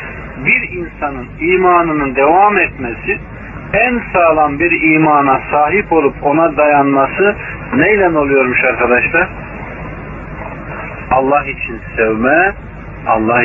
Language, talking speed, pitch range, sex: Turkish, 90 wpm, 125-170 Hz, male